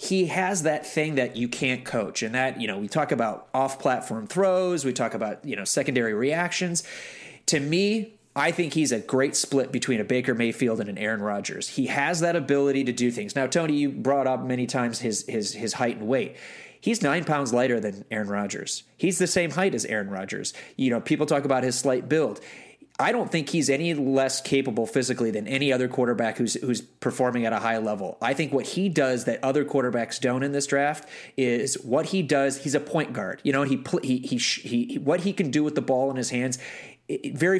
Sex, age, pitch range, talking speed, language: male, 30-49, 120-155 Hz, 220 wpm, English